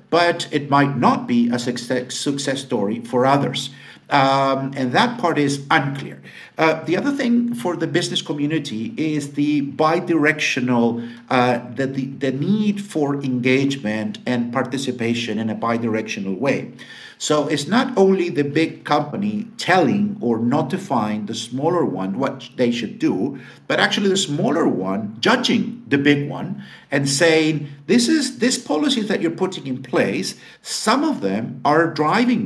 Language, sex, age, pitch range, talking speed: English, male, 50-69, 135-185 Hz, 150 wpm